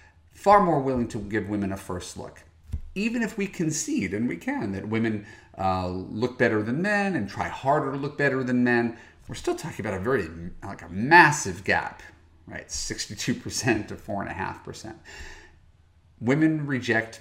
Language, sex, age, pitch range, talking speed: English, male, 40-59, 90-135 Hz, 180 wpm